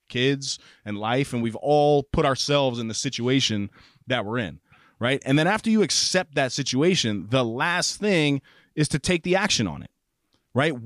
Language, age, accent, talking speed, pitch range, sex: English, 30-49, American, 180 wpm, 120-165 Hz, male